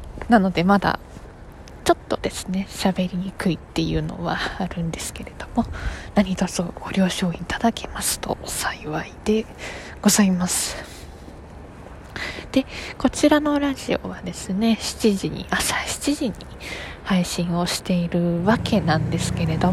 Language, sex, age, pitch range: Japanese, female, 20-39, 170-235 Hz